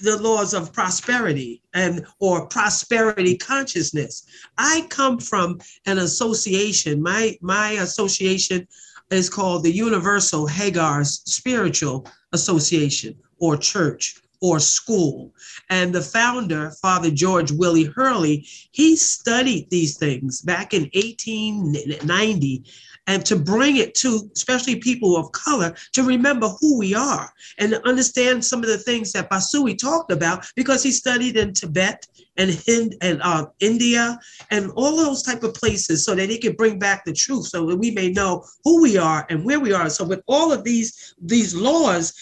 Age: 40-59